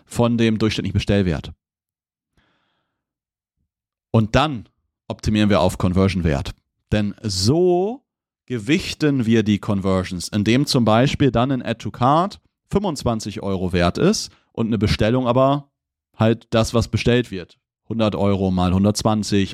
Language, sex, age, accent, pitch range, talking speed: German, male, 40-59, German, 100-125 Hz, 120 wpm